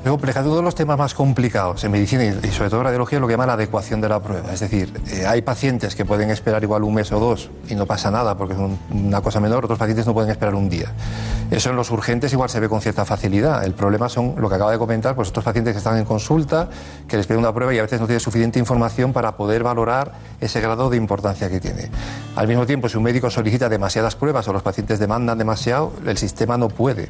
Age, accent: 40-59, Spanish